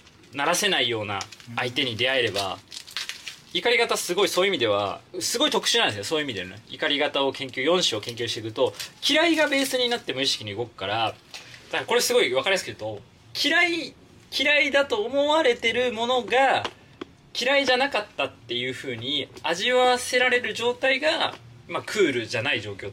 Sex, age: male, 20-39